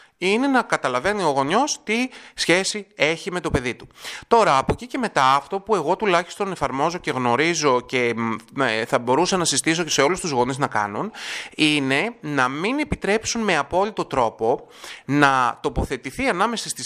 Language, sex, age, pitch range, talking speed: Greek, male, 30-49, 135-185 Hz, 165 wpm